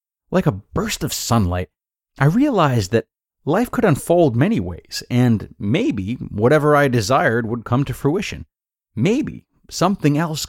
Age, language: 30-49, English